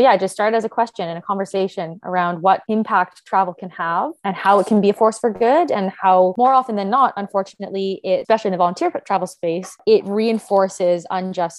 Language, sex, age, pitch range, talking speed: English, female, 20-39, 185-225 Hz, 220 wpm